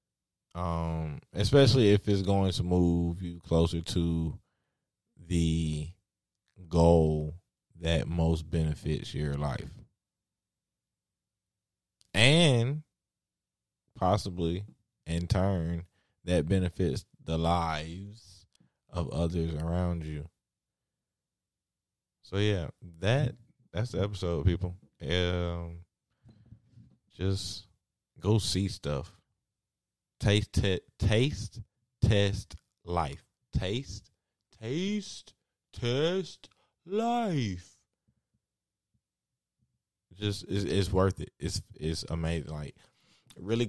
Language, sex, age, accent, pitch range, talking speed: English, male, 20-39, American, 85-105 Hz, 80 wpm